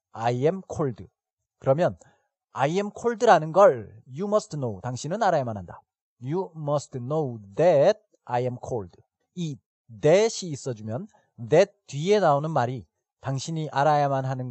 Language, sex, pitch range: Korean, male, 120-185 Hz